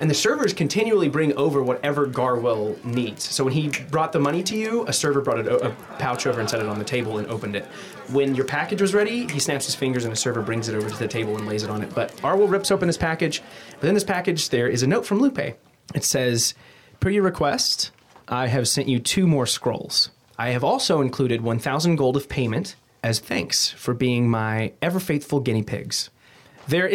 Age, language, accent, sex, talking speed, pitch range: 30-49, English, American, male, 225 wpm, 125-190 Hz